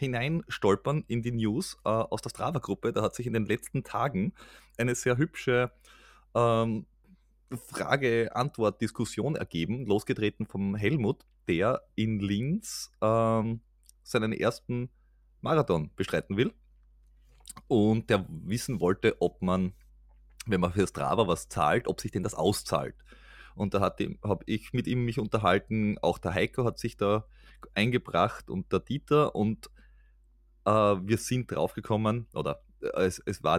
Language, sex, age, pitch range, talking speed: German, male, 30-49, 95-120 Hz, 140 wpm